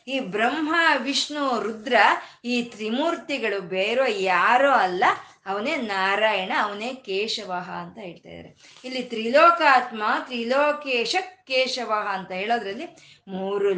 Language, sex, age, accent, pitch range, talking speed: Kannada, female, 20-39, native, 205-280 Hz, 100 wpm